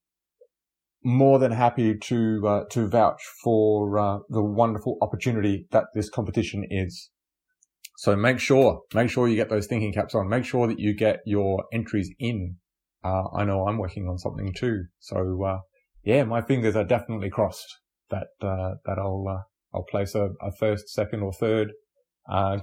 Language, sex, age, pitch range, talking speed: English, male, 20-39, 100-125 Hz, 170 wpm